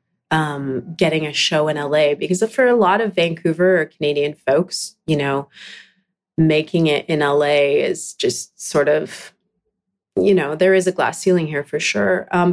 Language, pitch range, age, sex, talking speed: English, 155-195 Hz, 30-49, female, 170 wpm